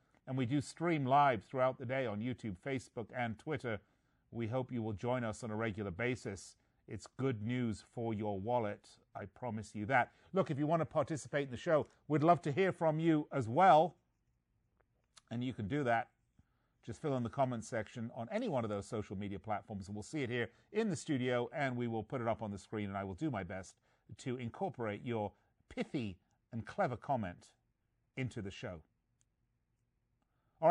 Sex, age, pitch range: male, 40-59, 115-155 Hz